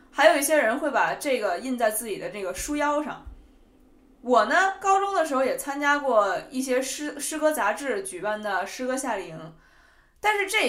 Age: 20-39